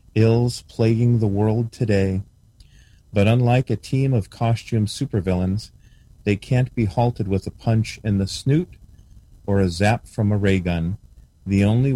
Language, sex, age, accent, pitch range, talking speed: English, male, 40-59, American, 95-115 Hz, 155 wpm